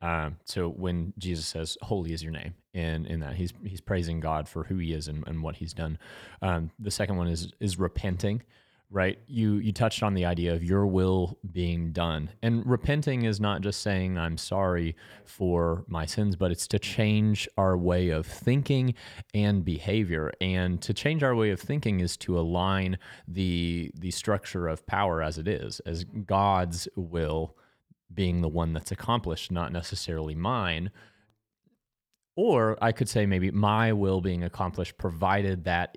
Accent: American